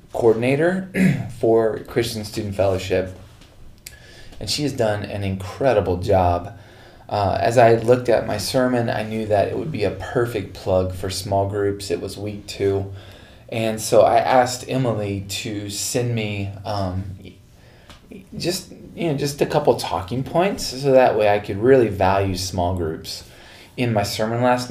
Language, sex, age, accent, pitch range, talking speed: English, male, 20-39, American, 95-120 Hz, 160 wpm